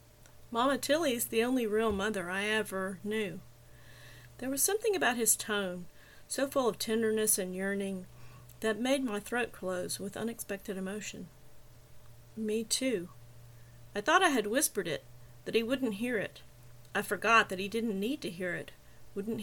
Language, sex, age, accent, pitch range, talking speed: English, female, 40-59, American, 185-225 Hz, 160 wpm